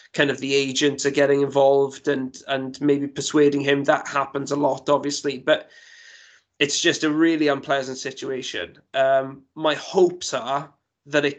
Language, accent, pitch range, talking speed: English, British, 135-150 Hz, 160 wpm